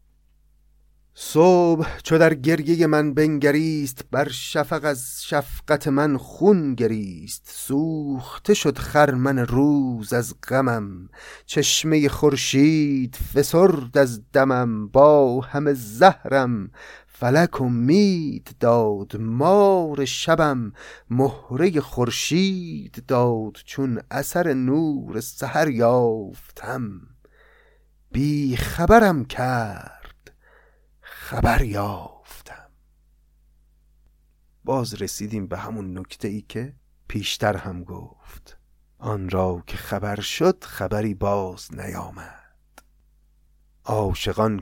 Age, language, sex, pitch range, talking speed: 30-49, Persian, male, 100-145 Hz, 85 wpm